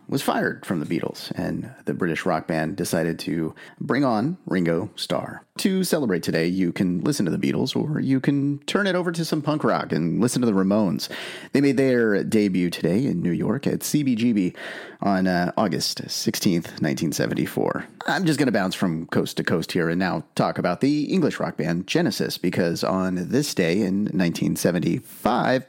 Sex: male